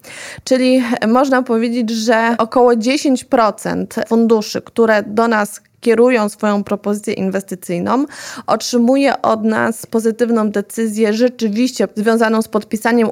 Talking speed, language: 105 wpm, Polish